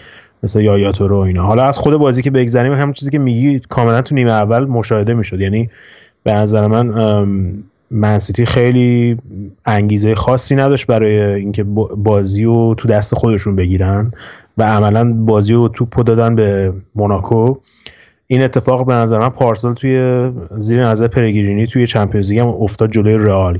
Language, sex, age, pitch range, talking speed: Persian, male, 30-49, 105-125 Hz, 160 wpm